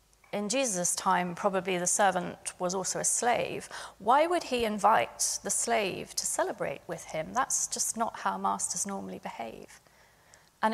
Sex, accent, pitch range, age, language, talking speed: female, British, 185-230 Hz, 30-49, English, 155 wpm